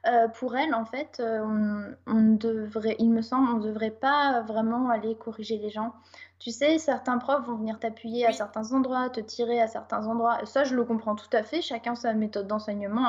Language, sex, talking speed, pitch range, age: French, female, 220 wpm, 205-235 Hz, 20-39